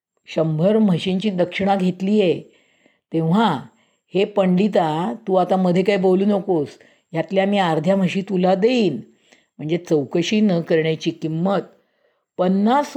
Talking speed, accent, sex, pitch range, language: 120 wpm, native, female, 160-205 Hz, Marathi